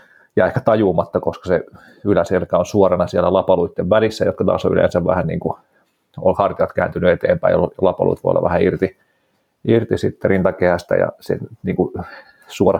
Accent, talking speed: native, 165 wpm